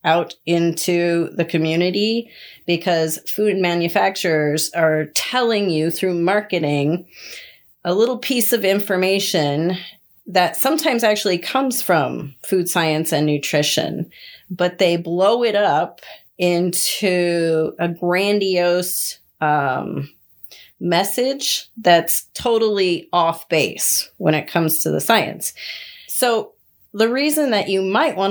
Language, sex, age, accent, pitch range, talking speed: English, female, 30-49, American, 165-210 Hz, 110 wpm